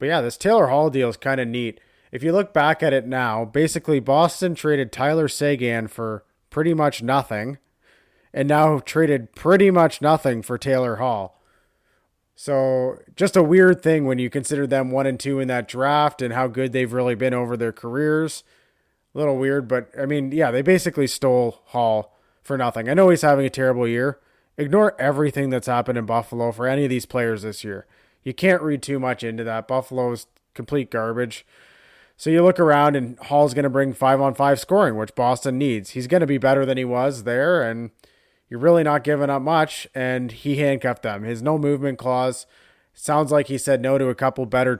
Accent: American